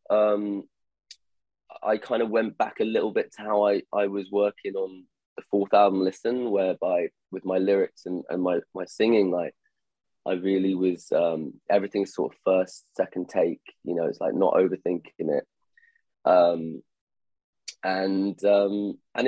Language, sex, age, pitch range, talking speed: Arabic, male, 20-39, 95-110 Hz, 160 wpm